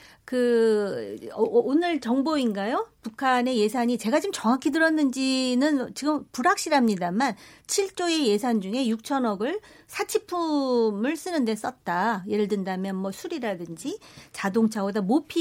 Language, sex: Korean, female